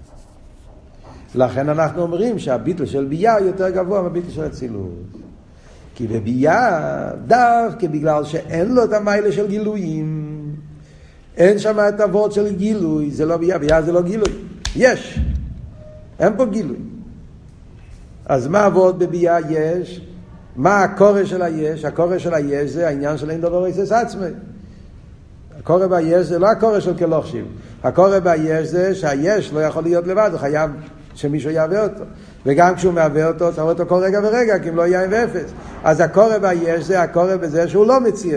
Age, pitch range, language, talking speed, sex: 50-69, 150-190 Hz, Hebrew, 160 wpm, male